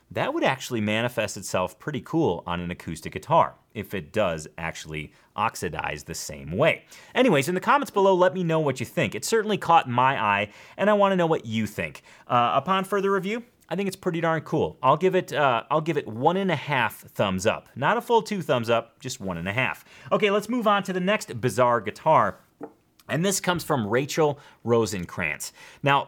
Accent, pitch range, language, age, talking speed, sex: American, 100-170 Hz, English, 30-49, 205 wpm, male